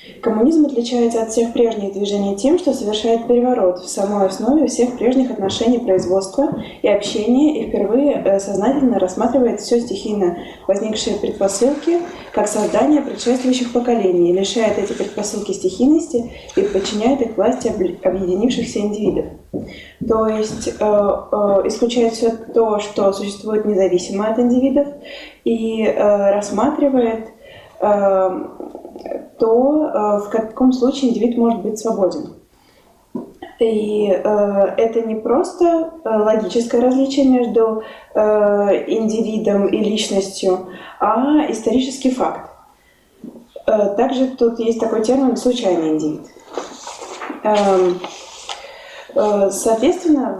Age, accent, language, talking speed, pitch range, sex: 20-39, native, Russian, 105 wpm, 205-250 Hz, female